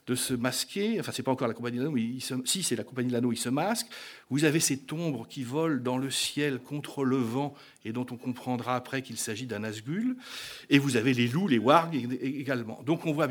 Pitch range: 120-155 Hz